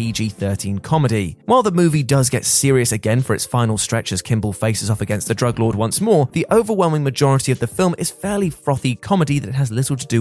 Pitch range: 115-165 Hz